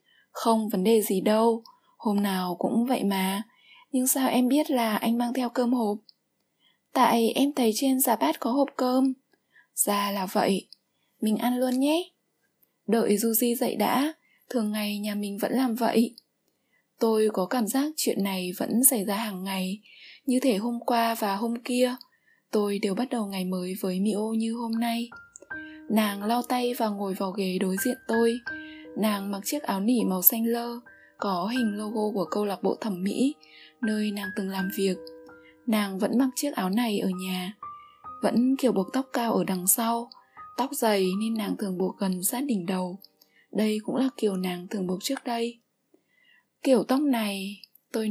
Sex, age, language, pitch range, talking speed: female, 20-39, Vietnamese, 205-255 Hz, 185 wpm